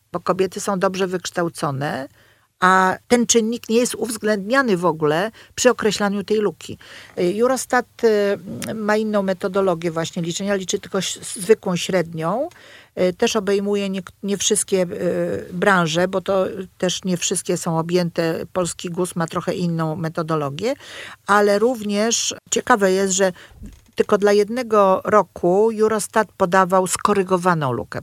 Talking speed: 130 wpm